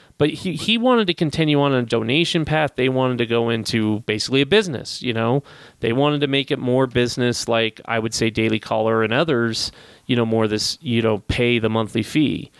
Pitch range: 115-155 Hz